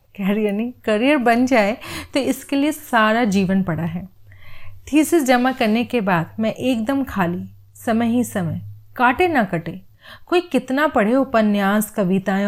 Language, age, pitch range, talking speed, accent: Hindi, 40-59, 200-265 Hz, 150 wpm, native